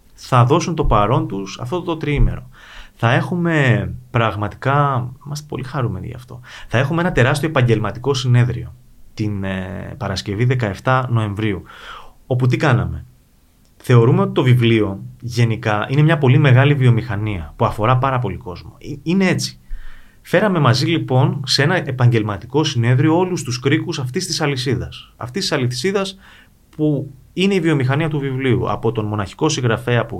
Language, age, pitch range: Greek, 30-49, 110-140 Hz